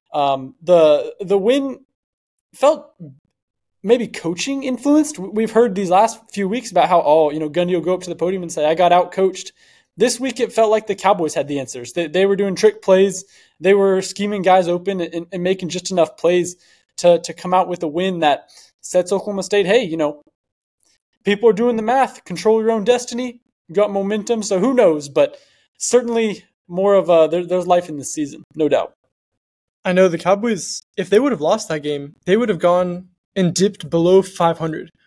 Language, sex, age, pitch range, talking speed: English, male, 20-39, 170-210 Hz, 205 wpm